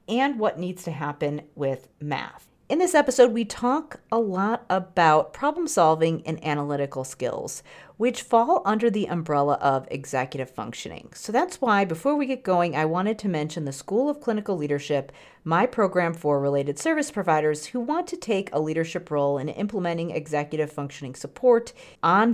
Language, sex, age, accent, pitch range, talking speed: English, female, 40-59, American, 150-225 Hz, 170 wpm